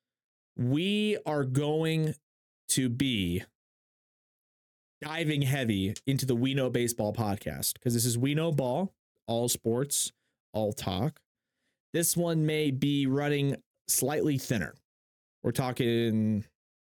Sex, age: male, 20-39